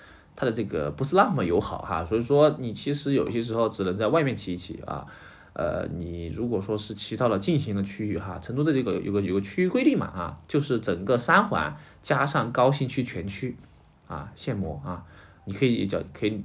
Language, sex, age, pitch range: Chinese, male, 20-39, 90-130 Hz